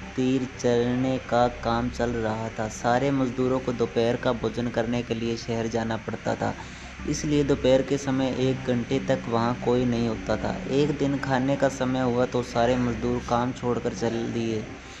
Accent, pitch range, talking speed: native, 115-135 Hz, 180 wpm